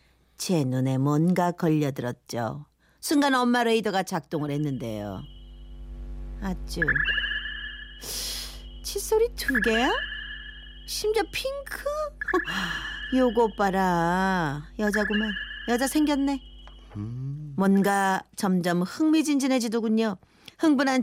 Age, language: 40-59, Korean